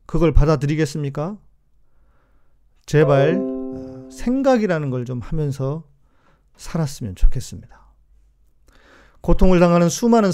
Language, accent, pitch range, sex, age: Korean, native, 120-165 Hz, male, 40-59